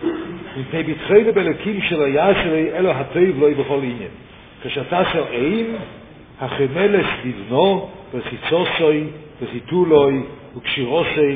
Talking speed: 100 wpm